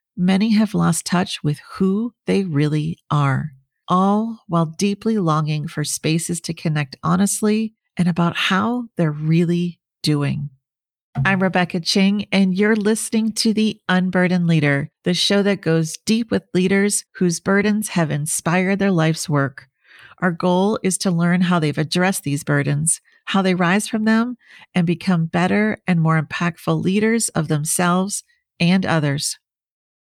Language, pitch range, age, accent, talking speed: English, 160-200 Hz, 40-59, American, 150 wpm